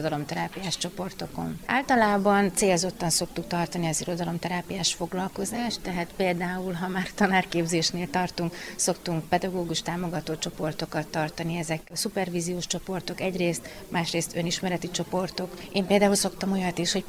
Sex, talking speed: female, 120 wpm